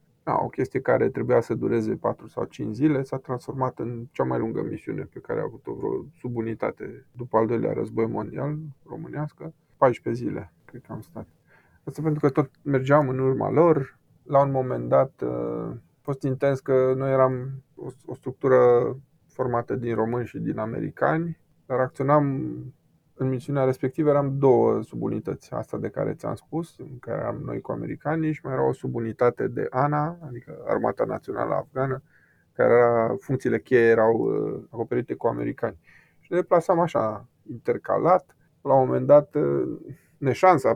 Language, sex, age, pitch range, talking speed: Romanian, male, 20-39, 115-145 Hz, 160 wpm